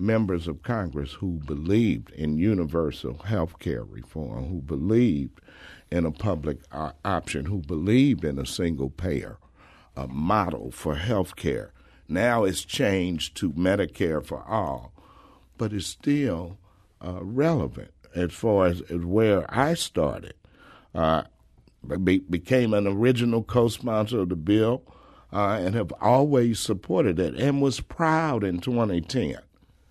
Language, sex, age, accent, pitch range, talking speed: English, male, 50-69, American, 90-130 Hz, 130 wpm